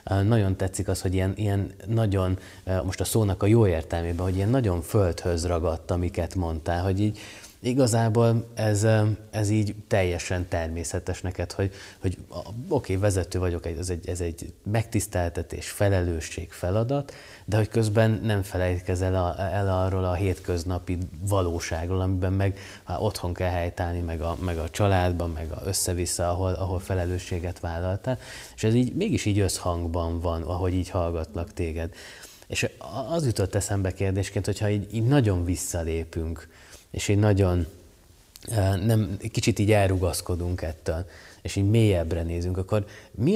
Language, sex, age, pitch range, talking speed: Hungarian, male, 20-39, 90-105 Hz, 140 wpm